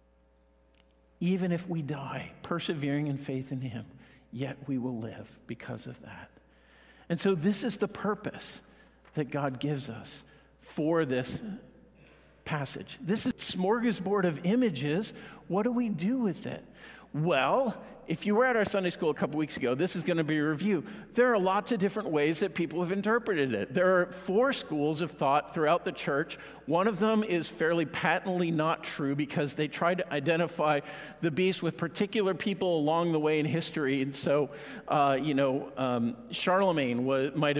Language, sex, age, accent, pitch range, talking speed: English, male, 50-69, American, 140-195 Hz, 175 wpm